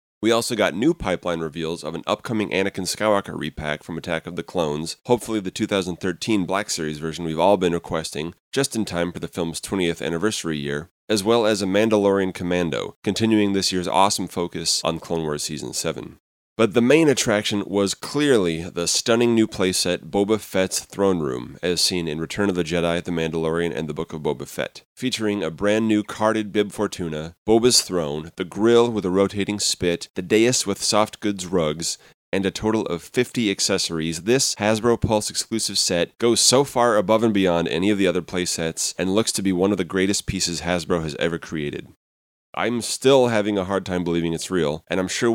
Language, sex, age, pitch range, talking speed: English, male, 30-49, 85-110 Hz, 195 wpm